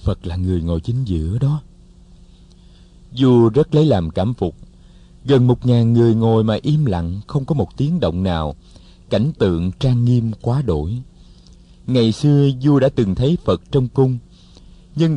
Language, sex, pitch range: Vietnamese, male, 95-135 Hz